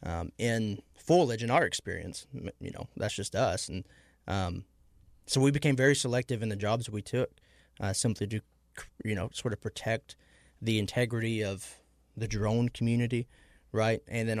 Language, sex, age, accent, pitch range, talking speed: English, male, 20-39, American, 105-125 Hz, 165 wpm